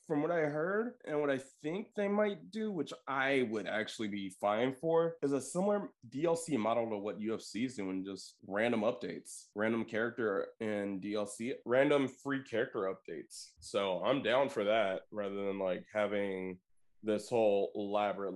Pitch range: 100-130 Hz